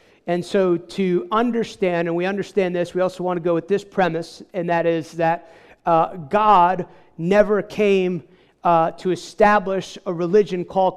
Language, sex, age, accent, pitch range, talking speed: English, male, 50-69, American, 175-200 Hz, 165 wpm